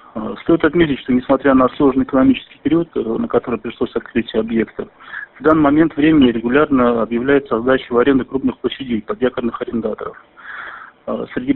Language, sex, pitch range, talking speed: Russian, male, 120-145 Hz, 140 wpm